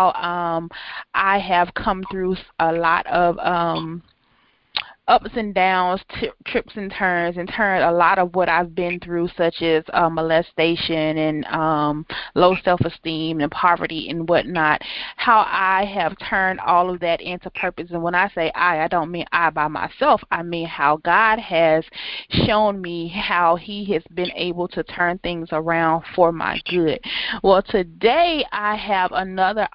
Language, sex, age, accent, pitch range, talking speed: English, female, 30-49, American, 170-210 Hz, 160 wpm